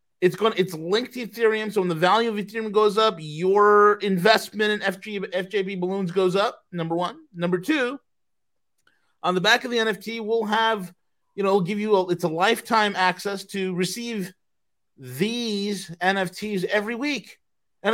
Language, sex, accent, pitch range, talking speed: English, male, American, 195-250 Hz, 175 wpm